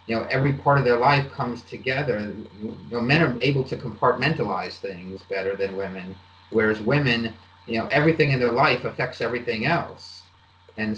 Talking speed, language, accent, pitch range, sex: 165 wpm, English, American, 100-125 Hz, male